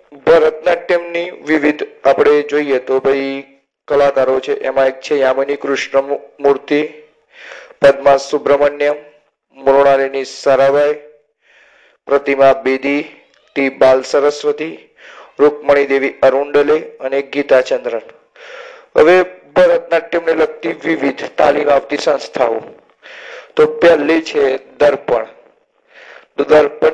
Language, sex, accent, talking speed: Gujarati, male, native, 50 wpm